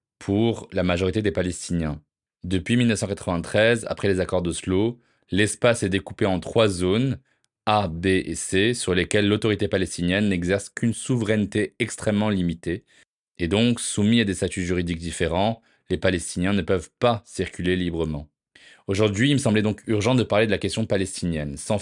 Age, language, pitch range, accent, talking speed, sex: 20-39, French, 90-110 Hz, French, 160 wpm, male